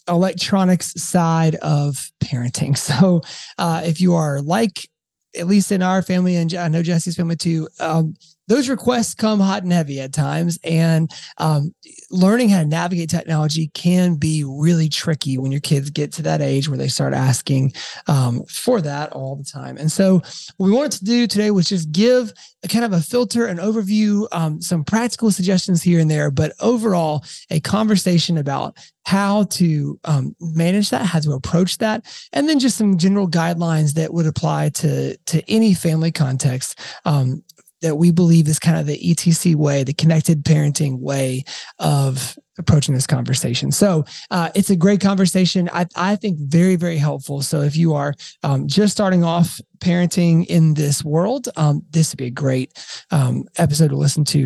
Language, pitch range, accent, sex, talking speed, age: English, 150-190 Hz, American, male, 180 wpm, 30-49